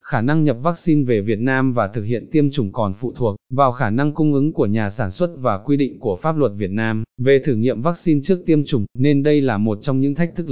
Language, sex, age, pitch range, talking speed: Vietnamese, male, 20-39, 115-145 Hz, 270 wpm